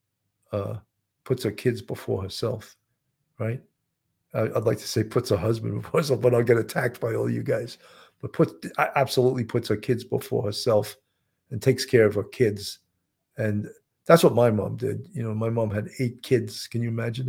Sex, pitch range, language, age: male, 110-135 Hz, English, 50-69